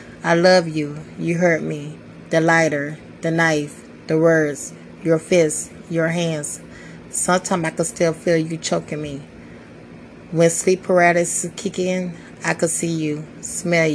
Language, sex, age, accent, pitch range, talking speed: English, female, 30-49, American, 150-175 Hz, 145 wpm